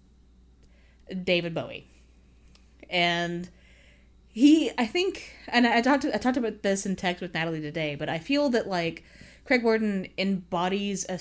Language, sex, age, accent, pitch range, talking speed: English, female, 20-39, American, 155-200 Hz, 145 wpm